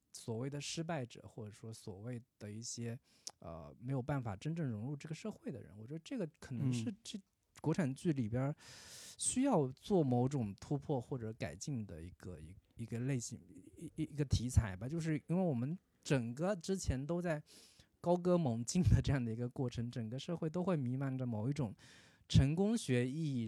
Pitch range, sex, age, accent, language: 115-155 Hz, male, 20-39, native, Chinese